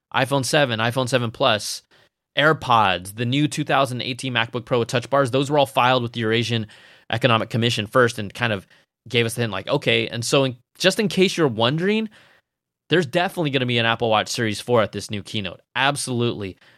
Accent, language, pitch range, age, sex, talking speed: American, English, 110-140 Hz, 20-39, male, 200 wpm